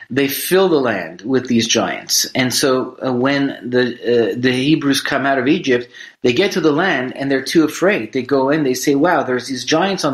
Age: 30-49